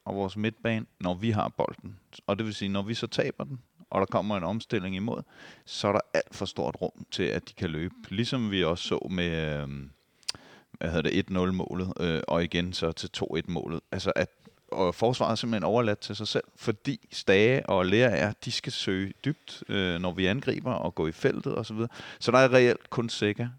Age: 30-49